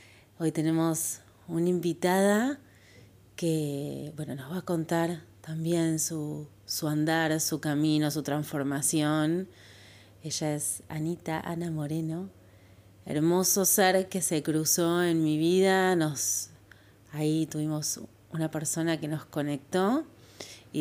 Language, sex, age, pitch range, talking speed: Spanish, female, 30-49, 140-165 Hz, 110 wpm